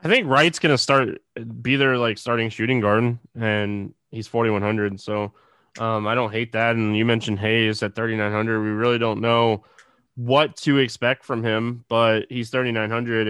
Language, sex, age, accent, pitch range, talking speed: English, male, 20-39, American, 115-150 Hz, 175 wpm